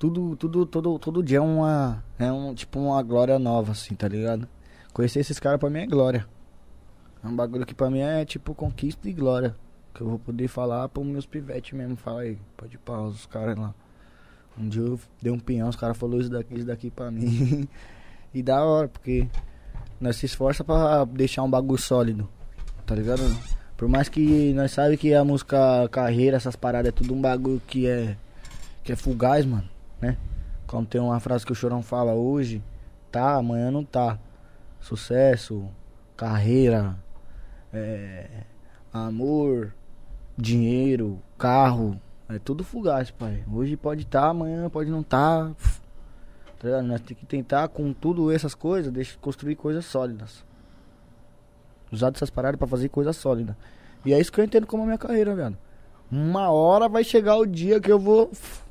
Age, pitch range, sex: 20-39, 115-140 Hz, male